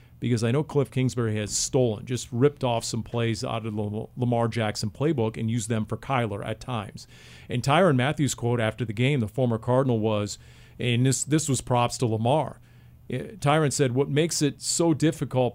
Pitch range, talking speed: 115-145 Hz, 195 wpm